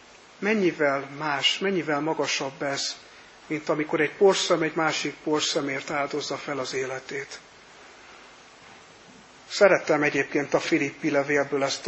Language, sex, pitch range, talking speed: Hungarian, male, 140-165 Hz, 110 wpm